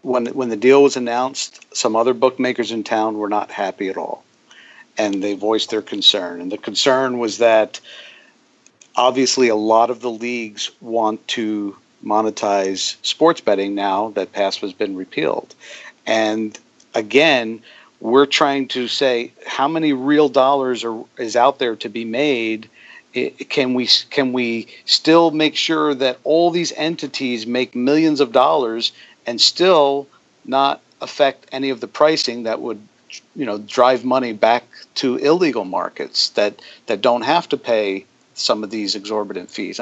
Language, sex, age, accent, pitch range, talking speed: English, male, 50-69, American, 115-140 Hz, 160 wpm